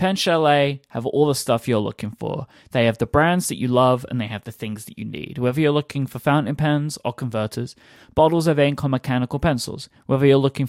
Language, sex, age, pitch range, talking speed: English, male, 30-49, 120-155 Hz, 230 wpm